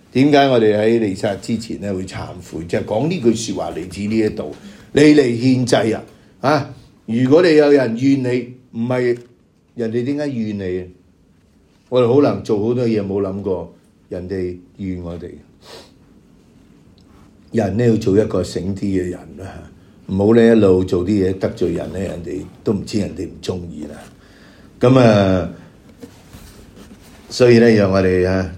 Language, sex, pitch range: English, male, 95-120 Hz